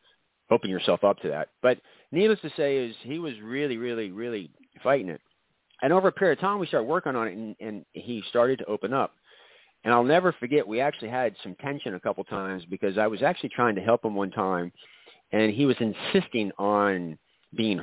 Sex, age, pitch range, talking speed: male, 40-59, 105-145 Hz, 210 wpm